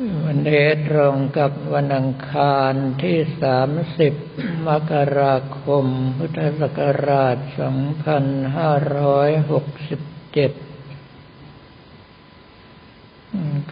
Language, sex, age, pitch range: Thai, male, 60-79, 135-145 Hz